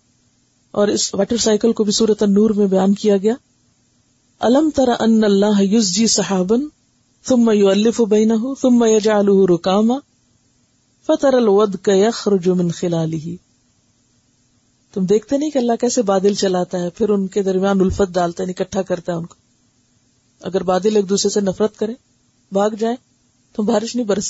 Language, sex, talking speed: Urdu, female, 155 wpm